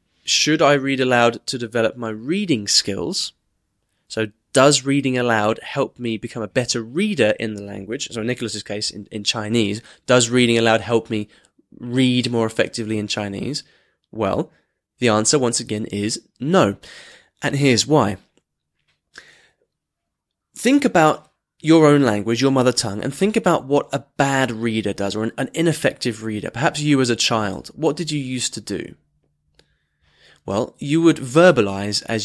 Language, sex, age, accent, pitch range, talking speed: English, male, 20-39, British, 110-140 Hz, 160 wpm